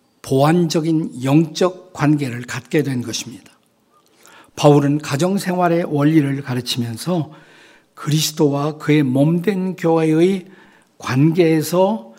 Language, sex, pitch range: Korean, male, 130-170 Hz